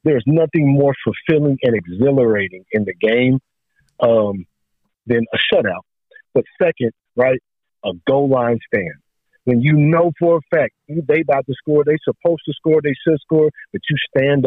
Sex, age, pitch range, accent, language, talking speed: male, 50-69, 115-145 Hz, American, English, 165 wpm